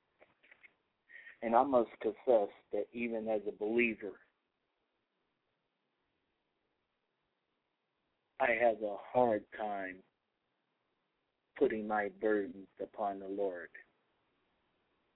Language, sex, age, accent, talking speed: English, male, 40-59, American, 80 wpm